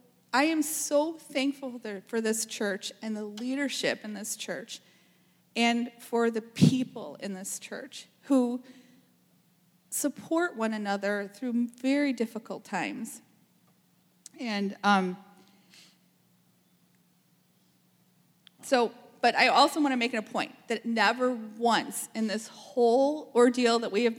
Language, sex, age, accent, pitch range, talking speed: English, female, 40-59, American, 195-245 Hz, 120 wpm